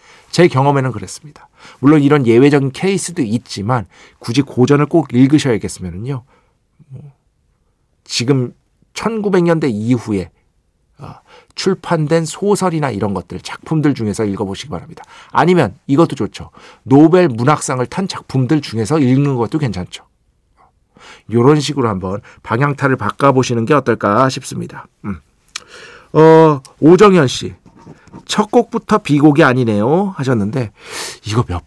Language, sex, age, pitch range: Korean, male, 50-69, 115-160 Hz